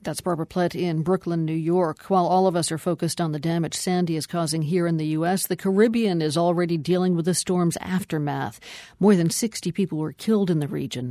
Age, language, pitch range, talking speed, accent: 50-69, English, 155-185 Hz, 220 wpm, American